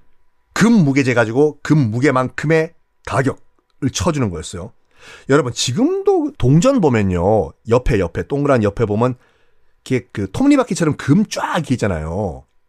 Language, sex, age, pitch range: Korean, male, 40-59, 125-190 Hz